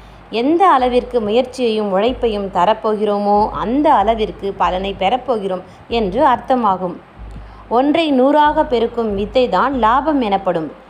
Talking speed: 95 wpm